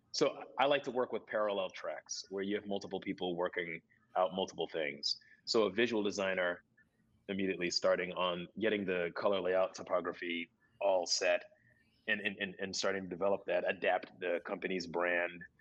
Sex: male